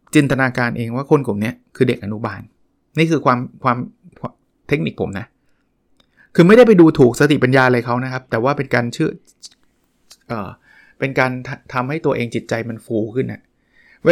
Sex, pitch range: male, 120-160 Hz